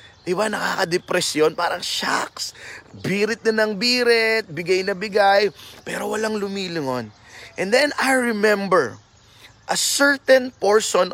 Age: 20-39